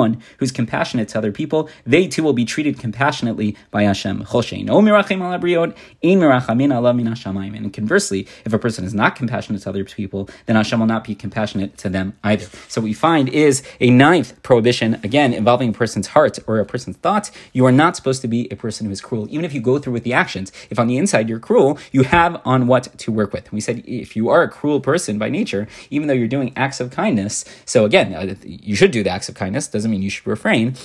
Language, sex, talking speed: English, male, 220 wpm